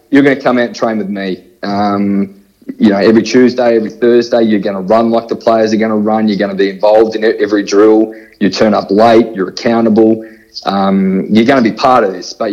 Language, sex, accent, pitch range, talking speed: English, male, Australian, 100-115 Hz, 240 wpm